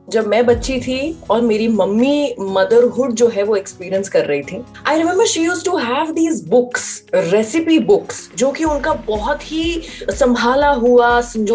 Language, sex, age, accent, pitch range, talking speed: Hindi, female, 20-39, native, 215-295 Hz, 140 wpm